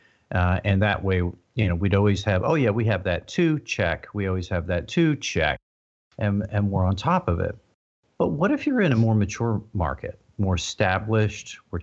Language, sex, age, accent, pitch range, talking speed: English, male, 50-69, American, 95-120 Hz, 210 wpm